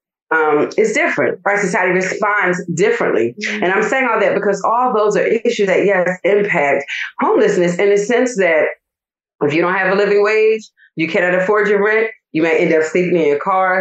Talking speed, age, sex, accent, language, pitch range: 195 wpm, 40-59, female, American, English, 175-225 Hz